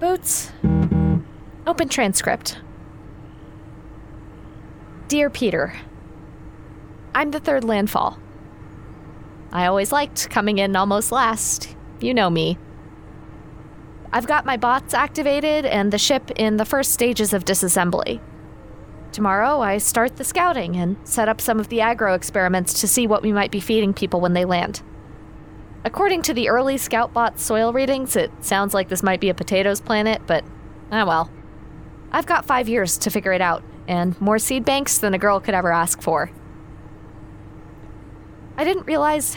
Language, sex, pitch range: English, female, 175-245 Hz